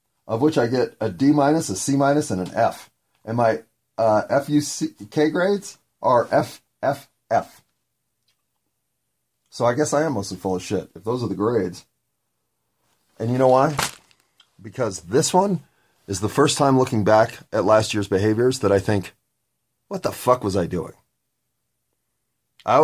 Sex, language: male, English